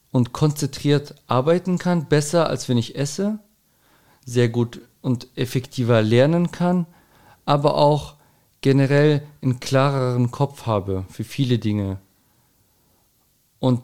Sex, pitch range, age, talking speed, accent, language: male, 120-145 Hz, 40-59, 115 wpm, German, German